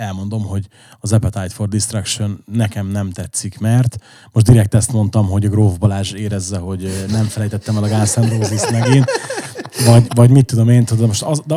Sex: male